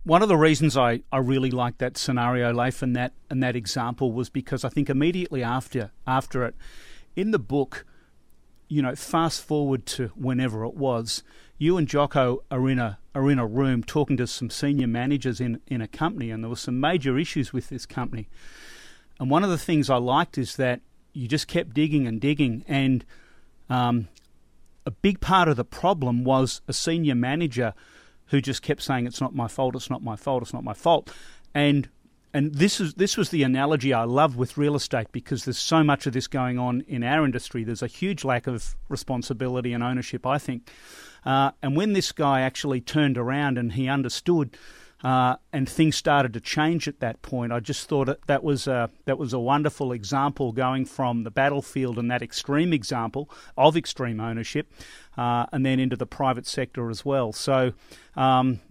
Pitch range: 125-145 Hz